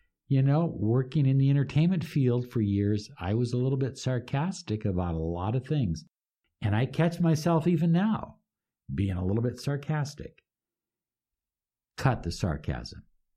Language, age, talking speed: English, 60-79, 155 wpm